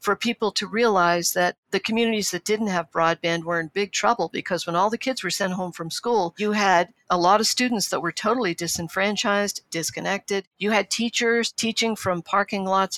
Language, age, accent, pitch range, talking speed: English, 50-69, American, 175-225 Hz, 200 wpm